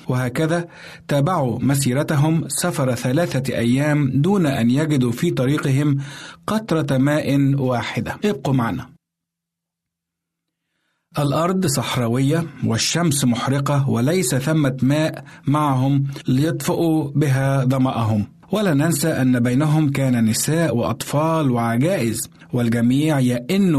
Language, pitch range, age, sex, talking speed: Arabic, 125-155 Hz, 50-69, male, 95 wpm